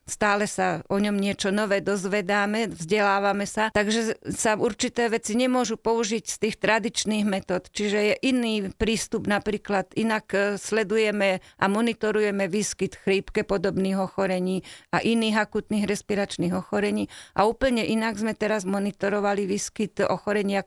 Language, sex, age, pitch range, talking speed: Slovak, female, 40-59, 190-215 Hz, 130 wpm